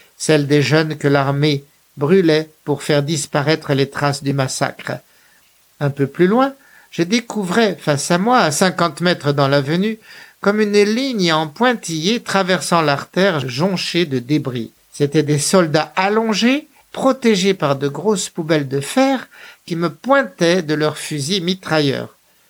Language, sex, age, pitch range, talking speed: French, male, 60-79, 150-205 Hz, 145 wpm